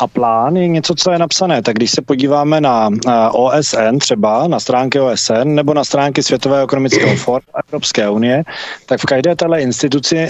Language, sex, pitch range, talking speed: Czech, male, 120-150 Hz, 175 wpm